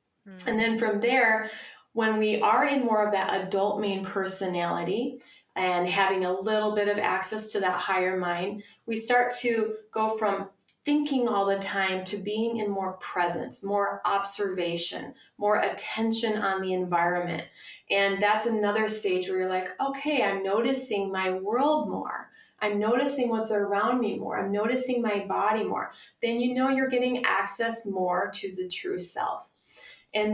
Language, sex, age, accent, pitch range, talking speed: English, female, 30-49, American, 185-220 Hz, 160 wpm